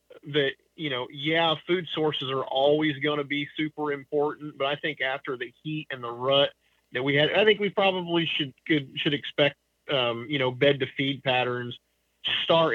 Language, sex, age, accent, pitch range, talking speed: English, male, 30-49, American, 130-155 Hz, 195 wpm